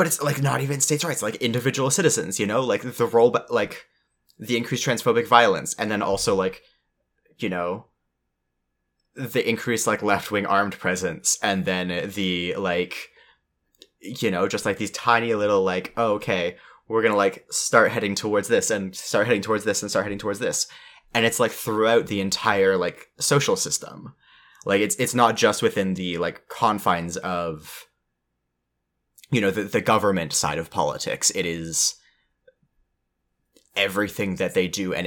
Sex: male